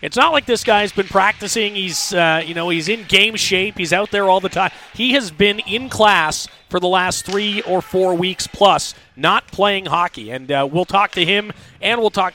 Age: 30-49